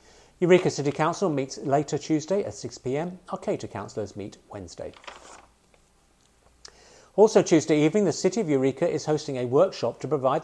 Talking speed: 150 wpm